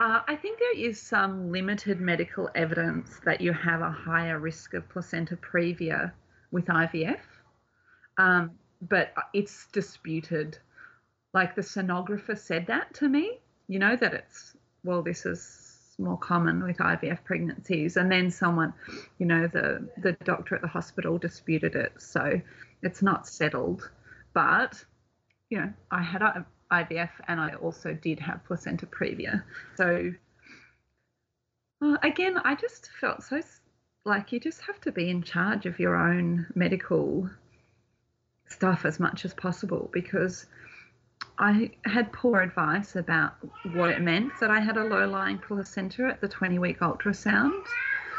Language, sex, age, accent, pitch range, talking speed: English, female, 30-49, Australian, 165-205 Hz, 145 wpm